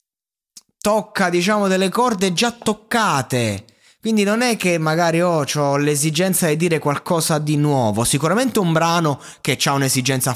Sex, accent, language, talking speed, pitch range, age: male, native, Italian, 145 wpm, 130-170 Hz, 20-39